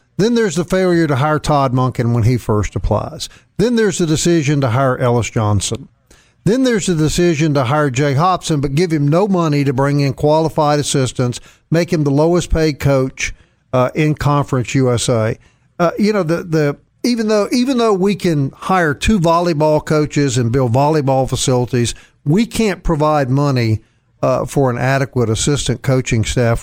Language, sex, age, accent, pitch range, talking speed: English, male, 50-69, American, 125-170 Hz, 175 wpm